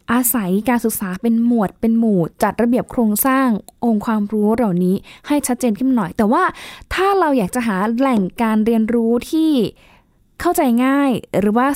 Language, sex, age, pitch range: Thai, female, 10-29, 200-245 Hz